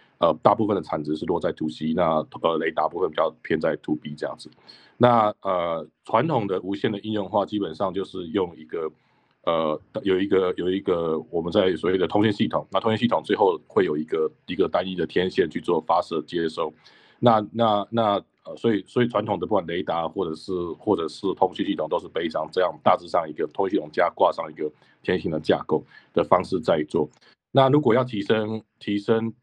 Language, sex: Chinese, male